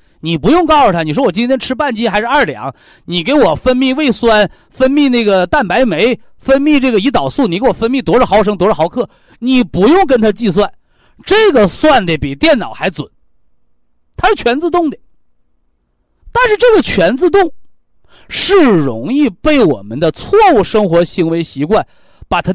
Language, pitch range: Chinese, 155-265 Hz